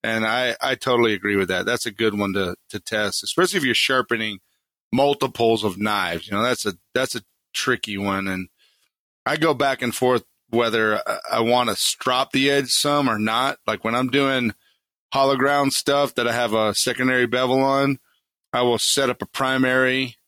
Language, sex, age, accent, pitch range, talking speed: English, male, 40-59, American, 110-135 Hz, 190 wpm